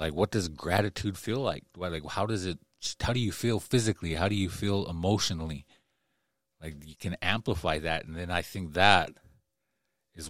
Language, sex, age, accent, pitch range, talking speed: English, male, 30-49, American, 80-100 Hz, 185 wpm